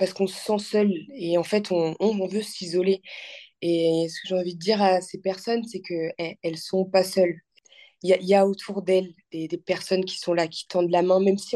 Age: 20-39